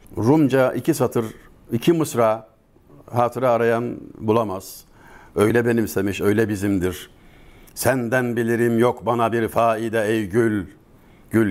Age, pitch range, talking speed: 60-79, 105-125 Hz, 110 wpm